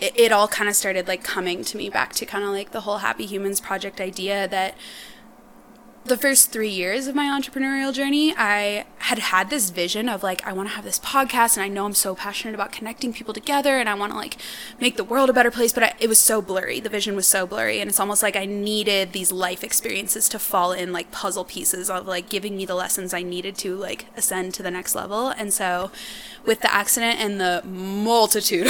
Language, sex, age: English, female, 20-39